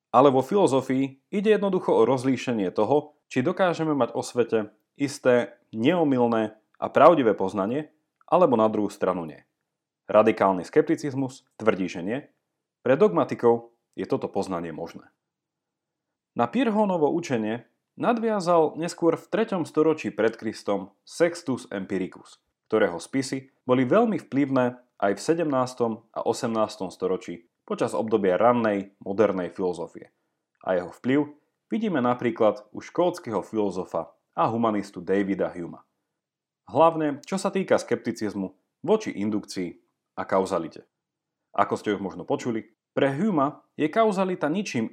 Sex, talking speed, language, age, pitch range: male, 125 wpm, Slovak, 30-49, 105-160 Hz